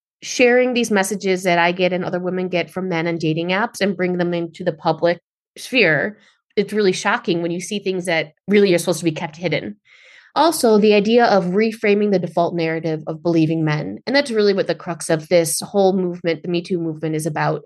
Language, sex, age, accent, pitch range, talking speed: English, female, 30-49, American, 165-190 Hz, 220 wpm